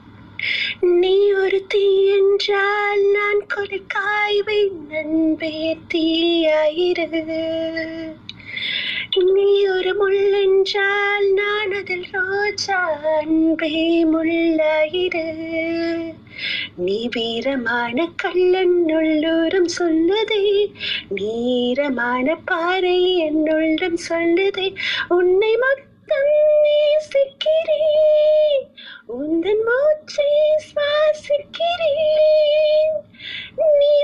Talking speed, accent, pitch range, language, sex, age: 50 wpm, native, 310-395 Hz, Tamil, female, 30-49